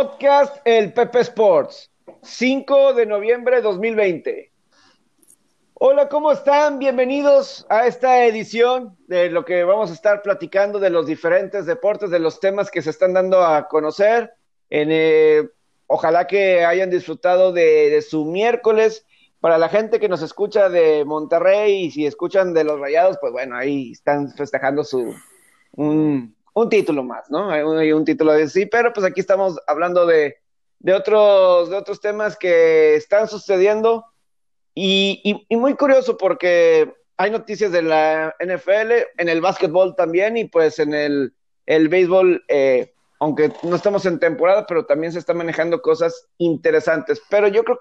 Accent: Mexican